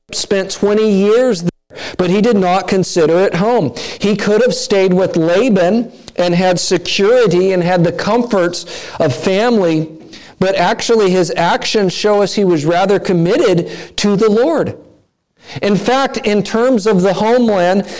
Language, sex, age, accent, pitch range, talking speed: English, male, 50-69, American, 170-215 Hz, 155 wpm